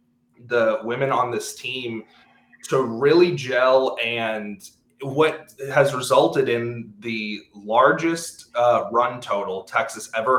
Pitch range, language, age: 110-150 Hz, English, 20-39